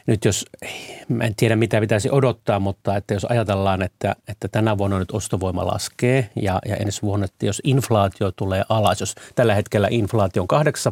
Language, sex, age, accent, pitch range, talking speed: Finnish, male, 30-49, native, 100-115 Hz, 175 wpm